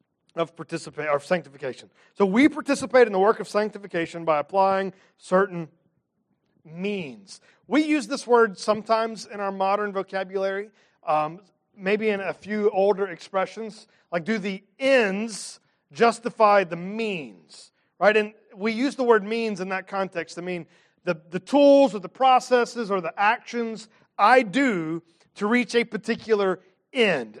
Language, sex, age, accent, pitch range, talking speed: English, male, 40-59, American, 190-240 Hz, 150 wpm